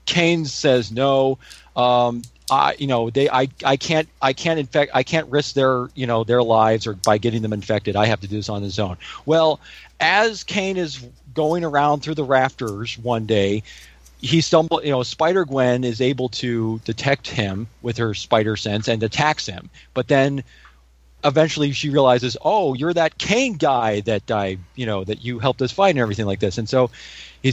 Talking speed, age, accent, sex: 195 wpm, 40-59, American, male